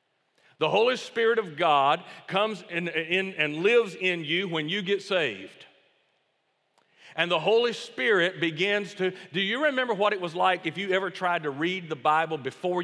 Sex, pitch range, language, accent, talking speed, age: male, 145-185 Hz, English, American, 170 wpm, 40-59